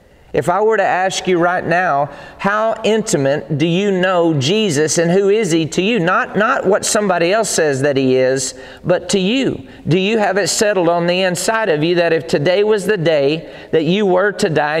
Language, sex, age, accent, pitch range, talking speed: English, male, 40-59, American, 145-190 Hz, 215 wpm